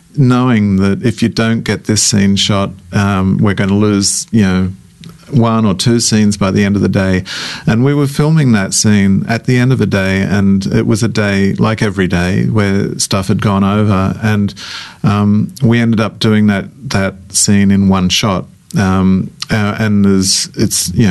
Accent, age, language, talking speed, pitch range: Australian, 40-59, English, 195 wpm, 100-115 Hz